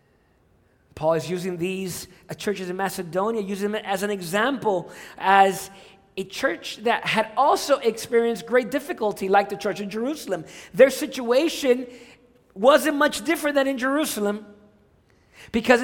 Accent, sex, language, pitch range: American, male, English, 160-225 Hz